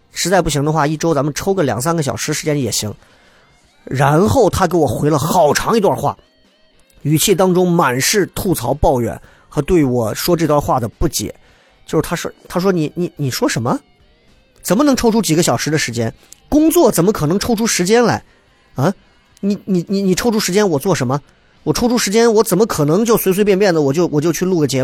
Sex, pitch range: male, 135-190 Hz